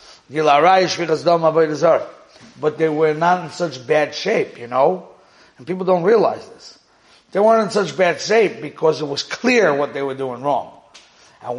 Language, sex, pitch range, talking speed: English, male, 135-175 Hz, 160 wpm